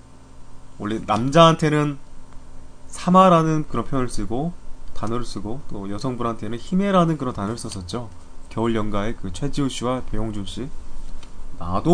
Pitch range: 85-135 Hz